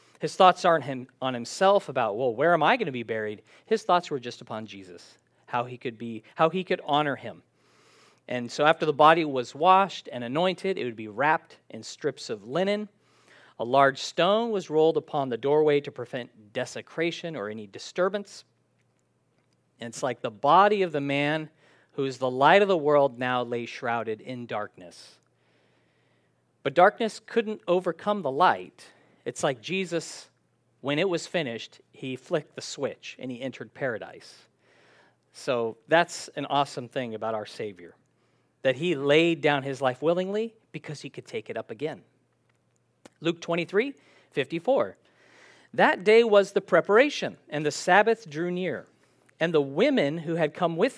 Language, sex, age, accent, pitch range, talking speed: English, male, 40-59, American, 130-185 Hz, 165 wpm